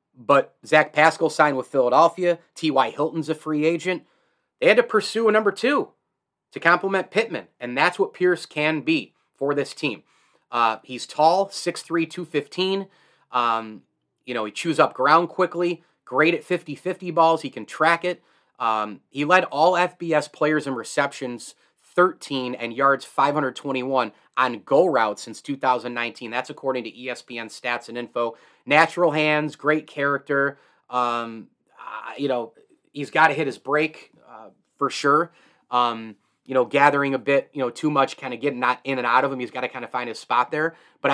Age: 30-49